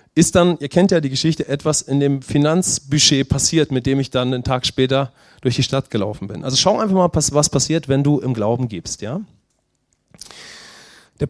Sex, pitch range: male, 130-170 Hz